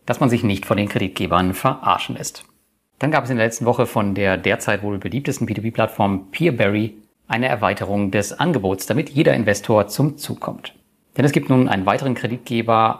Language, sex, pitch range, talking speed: German, male, 105-130 Hz, 185 wpm